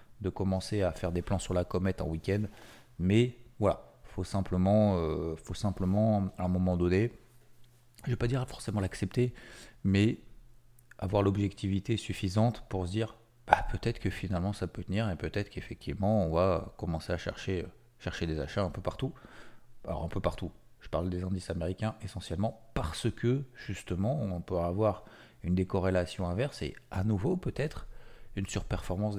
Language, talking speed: French, 165 wpm